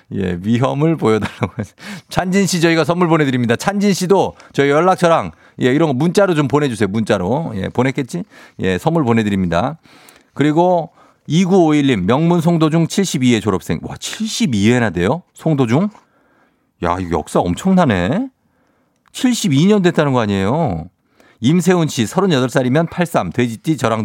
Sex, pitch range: male, 125-185 Hz